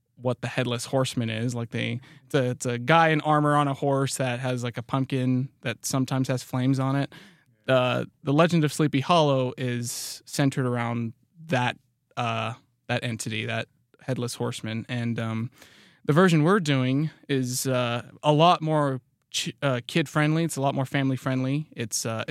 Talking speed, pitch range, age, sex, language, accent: 180 wpm, 125-145 Hz, 20-39, male, English, American